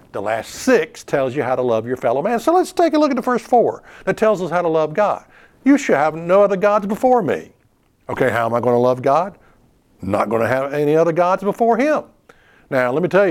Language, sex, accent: English, male, American